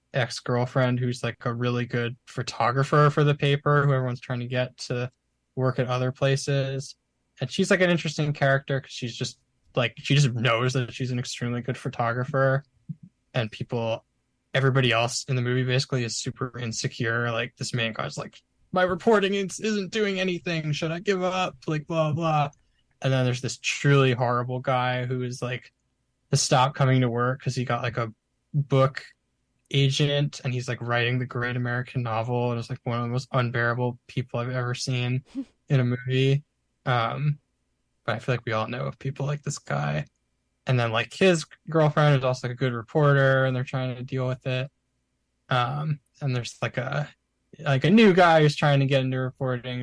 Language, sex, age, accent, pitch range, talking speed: English, male, 10-29, American, 120-145 Hz, 190 wpm